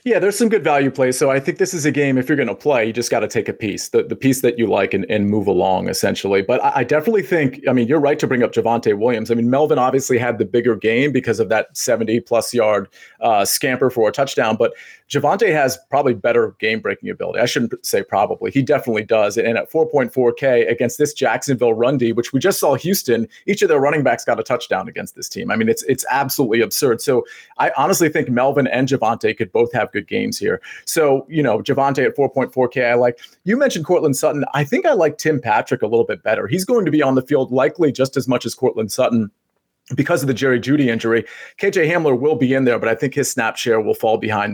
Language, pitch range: English, 125-180 Hz